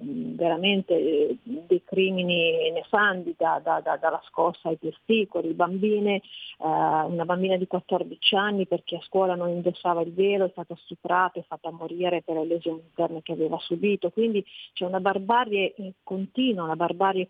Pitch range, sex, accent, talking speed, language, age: 175-200 Hz, female, native, 160 wpm, Italian, 40-59